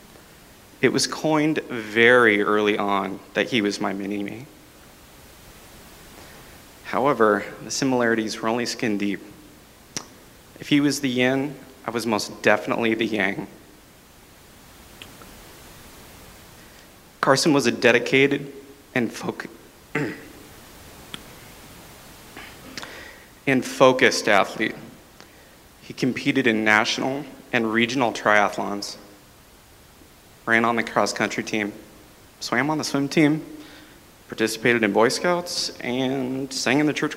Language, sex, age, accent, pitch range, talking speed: English, male, 30-49, American, 105-135 Hz, 100 wpm